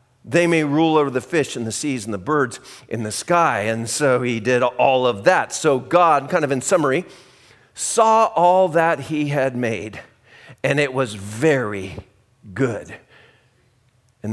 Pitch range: 105-130 Hz